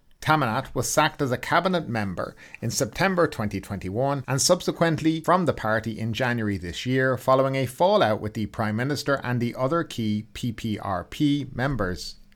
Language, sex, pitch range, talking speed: English, male, 110-140 Hz, 155 wpm